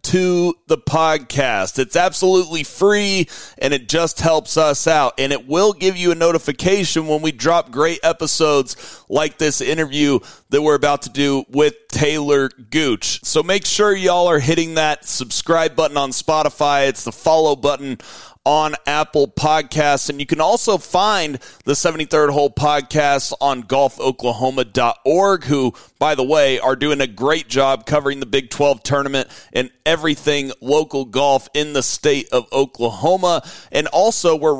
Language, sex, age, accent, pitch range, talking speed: English, male, 40-59, American, 135-165 Hz, 155 wpm